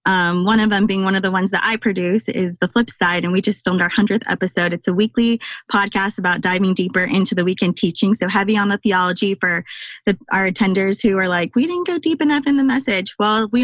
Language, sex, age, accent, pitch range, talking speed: English, female, 20-39, American, 185-225 Hz, 245 wpm